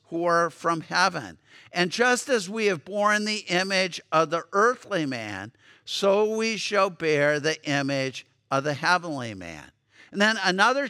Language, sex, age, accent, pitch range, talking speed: English, male, 50-69, American, 155-200 Hz, 160 wpm